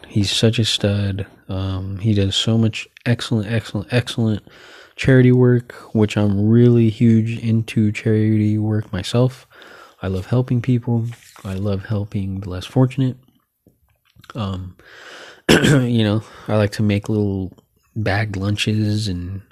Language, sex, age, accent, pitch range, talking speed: English, male, 20-39, American, 100-120 Hz, 130 wpm